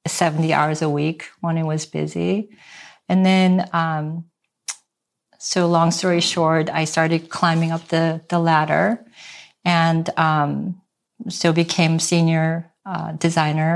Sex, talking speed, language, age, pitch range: female, 125 wpm, English, 40-59, 155-180 Hz